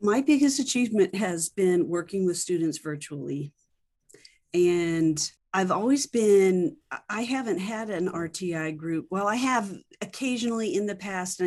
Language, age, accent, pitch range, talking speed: English, 40-59, American, 160-205 Hz, 140 wpm